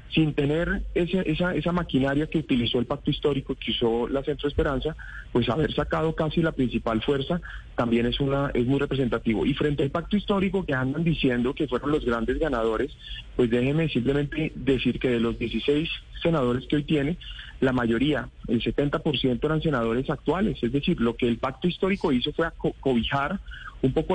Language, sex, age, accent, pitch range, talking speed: Spanish, male, 30-49, Colombian, 125-155 Hz, 190 wpm